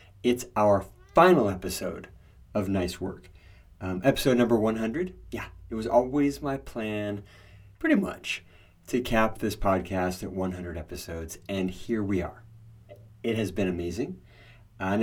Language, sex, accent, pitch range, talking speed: English, male, American, 90-110 Hz, 140 wpm